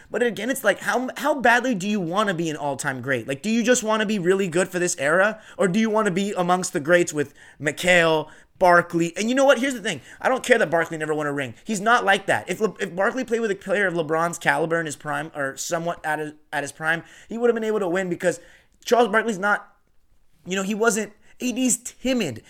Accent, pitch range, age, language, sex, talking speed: American, 160-215 Hz, 30-49, English, male, 260 wpm